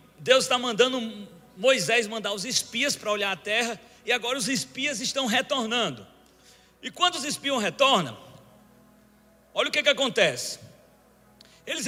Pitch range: 220-300 Hz